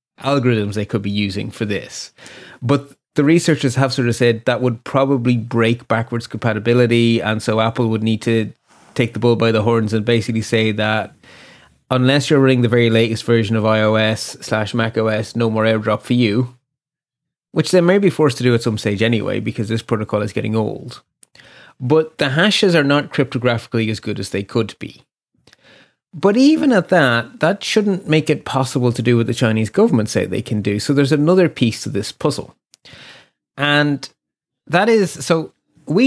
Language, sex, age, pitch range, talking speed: English, male, 30-49, 110-145 Hz, 185 wpm